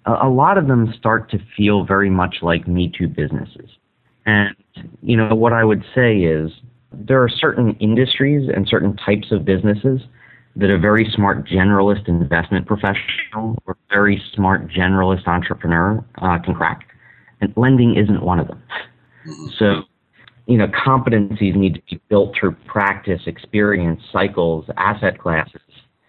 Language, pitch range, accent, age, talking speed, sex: English, 95-120 Hz, American, 40-59, 145 wpm, male